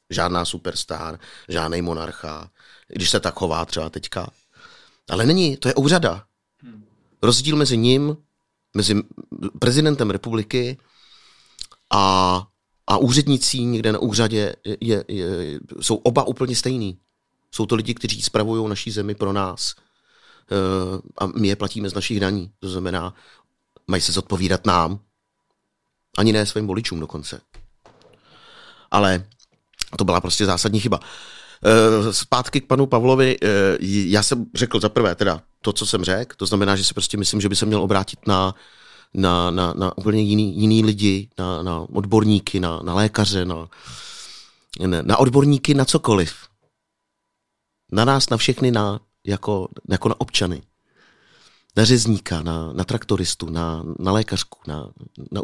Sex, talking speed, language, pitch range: male, 140 wpm, Czech, 95-115 Hz